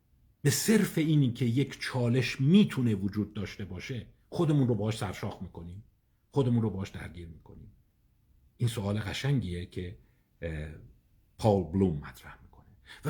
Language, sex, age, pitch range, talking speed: Persian, male, 50-69, 100-125 Hz, 135 wpm